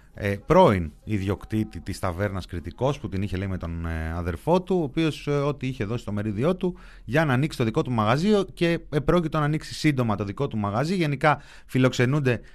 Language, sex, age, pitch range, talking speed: Greek, male, 30-49, 105-155 Hz, 185 wpm